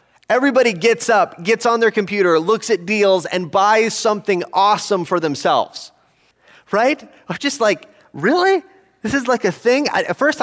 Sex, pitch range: male, 150-230 Hz